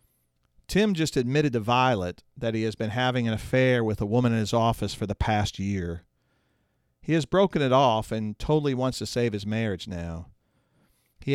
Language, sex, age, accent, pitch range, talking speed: English, male, 40-59, American, 105-135 Hz, 190 wpm